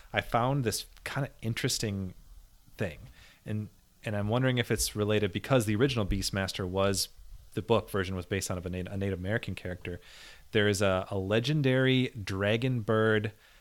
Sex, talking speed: male, 165 wpm